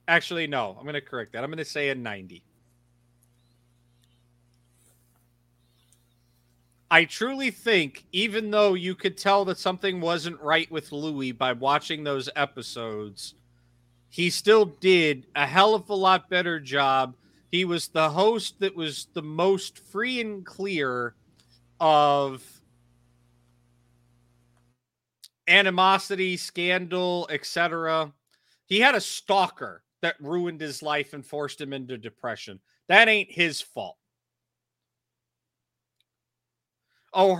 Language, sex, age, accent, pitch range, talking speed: English, male, 30-49, American, 120-180 Hz, 120 wpm